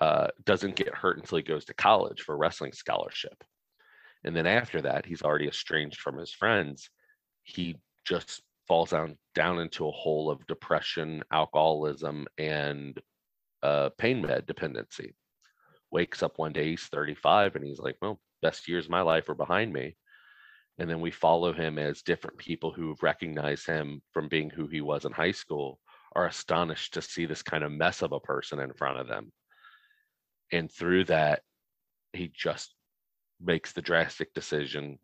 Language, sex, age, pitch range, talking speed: English, male, 30-49, 75-85 Hz, 175 wpm